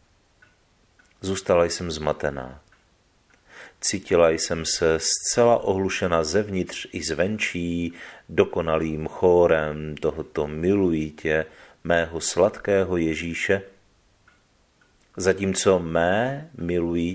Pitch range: 80-100 Hz